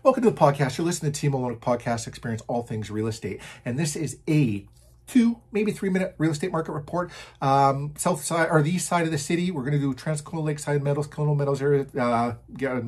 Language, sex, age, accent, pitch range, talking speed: English, male, 40-59, American, 130-165 Hz, 225 wpm